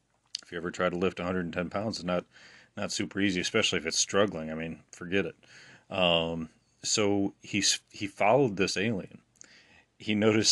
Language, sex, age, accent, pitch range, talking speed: English, male, 30-49, American, 90-105 Hz, 170 wpm